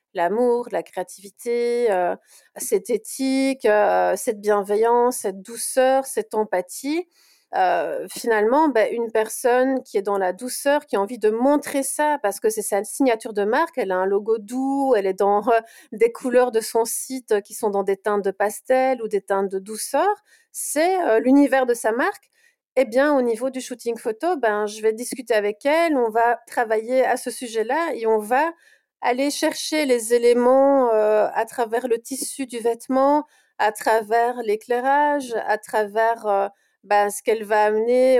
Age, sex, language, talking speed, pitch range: 30-49, female, French, 175 wpm, 215-265 Hz